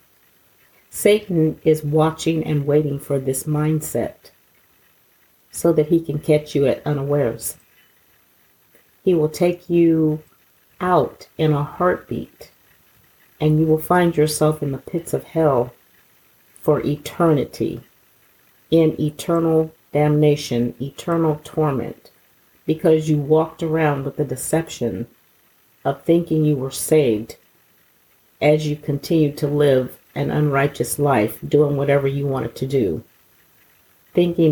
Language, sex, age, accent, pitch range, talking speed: English, female, 50-69, American, 145-165 Hz, 120 wpm